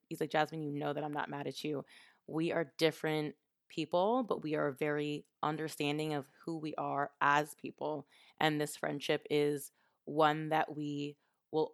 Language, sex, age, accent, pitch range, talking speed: English, female, 20-39, American, 145-165 Hz, 175 wpm